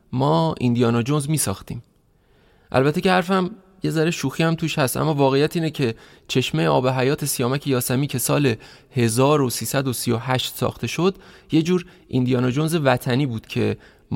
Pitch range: 120-165 Hz